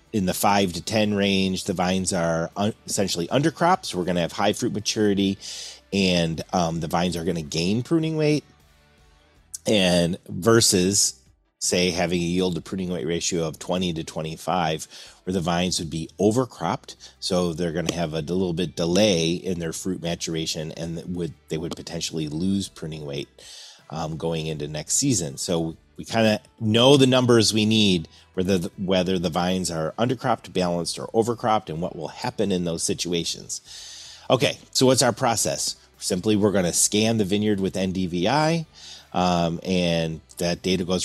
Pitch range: 85-105 Hz